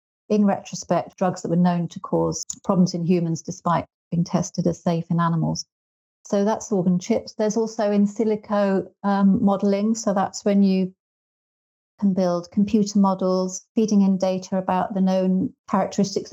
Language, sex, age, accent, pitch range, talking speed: English, female, 40-59, British, 180-200 Hz, 160 wpm